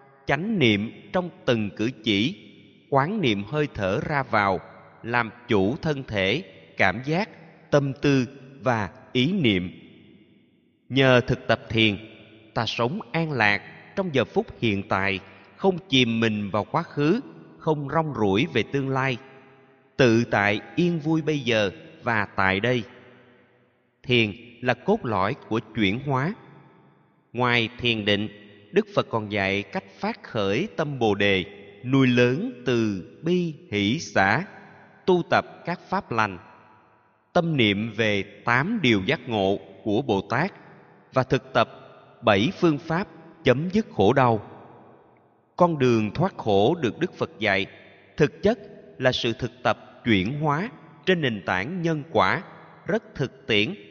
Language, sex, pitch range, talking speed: Vietnamese, male, 105-145 Hz, 145 wpm